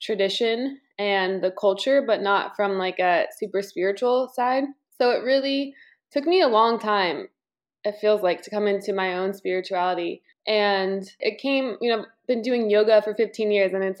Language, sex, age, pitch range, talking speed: English, female, 20-39, 190-230 Hz, 180 wpm